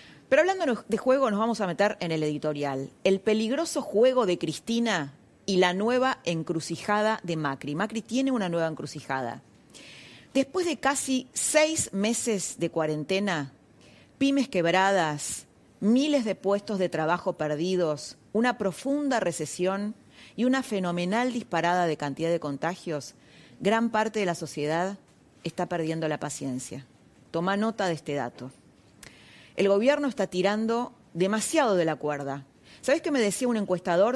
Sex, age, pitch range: female, 30-49, 160-230 Hz